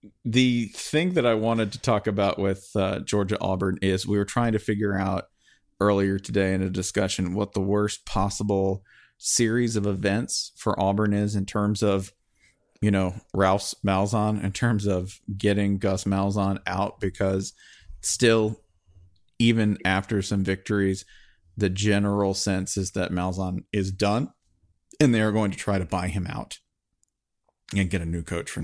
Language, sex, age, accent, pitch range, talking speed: English, male, 40-59, American, 95-110 Hz, 165 wpm